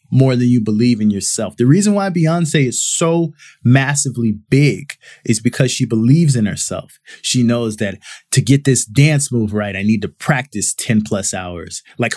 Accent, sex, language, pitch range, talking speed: American, male, English, 120-160 Hz, 180 wpm